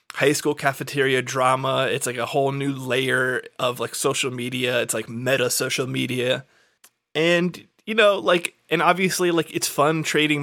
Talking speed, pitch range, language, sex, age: 165 wpm, 130-160 Hz, English, male, 20-39